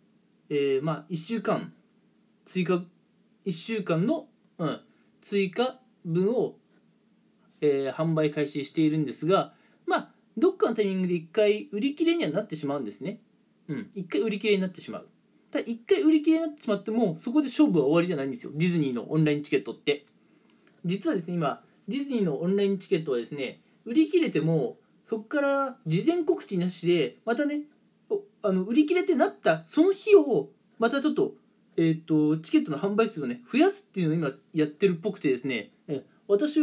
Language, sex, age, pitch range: Japanese, male, 20-39, 155-230 Hz